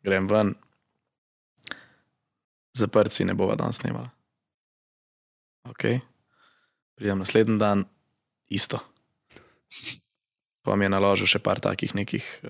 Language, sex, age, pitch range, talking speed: Slovak, male, 20-39, 110-135 Hz, 90 wpm